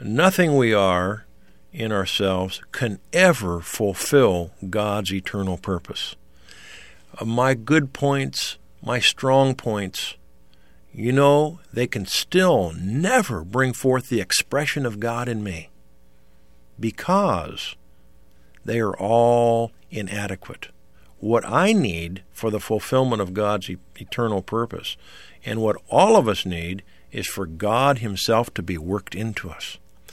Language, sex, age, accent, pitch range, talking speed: English, male, 50-69, American, 95-130 Hz, 125 wpm